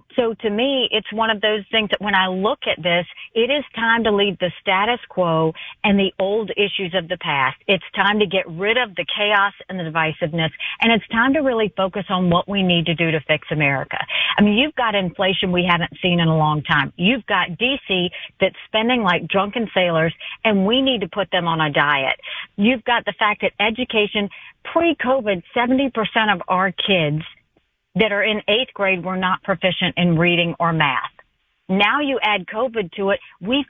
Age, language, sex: 50-69, English, female